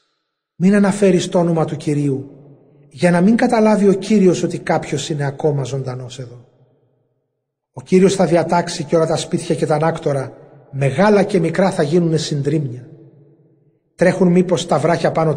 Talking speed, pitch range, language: 155 wpm, 145-175 Hz, Greek